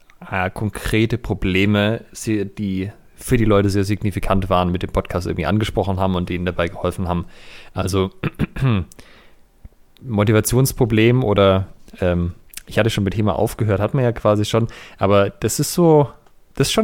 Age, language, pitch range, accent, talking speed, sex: 30-49, German, 95-110 Hz, German, 150 wpm, male